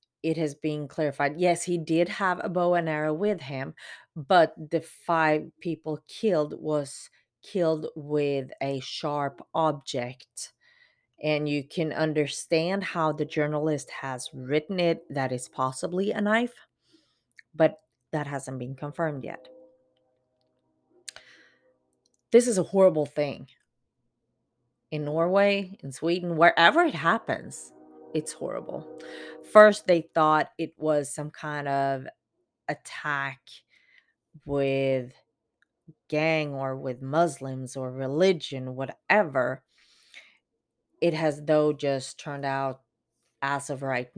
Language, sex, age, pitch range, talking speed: English, female, 30-49, 135-165 Hz, 115 wpm